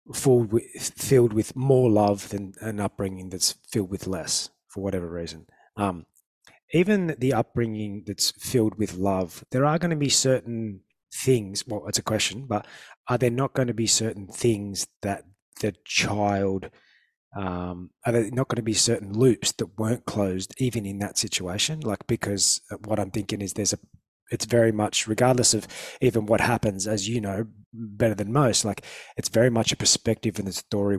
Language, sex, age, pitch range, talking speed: English, male, 20-39, 100-120 Hz, 180 wpm